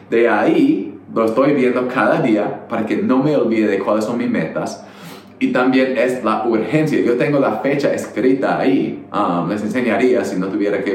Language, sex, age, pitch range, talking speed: Spanish, male, 30-49, 105-125 Hz, 190 wpm